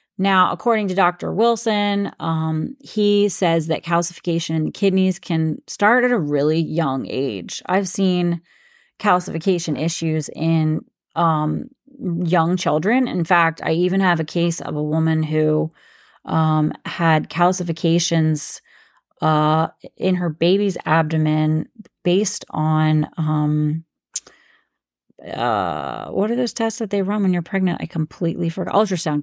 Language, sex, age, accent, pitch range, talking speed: English, female, 30-49, American, 160-195 Hz, 130 wpm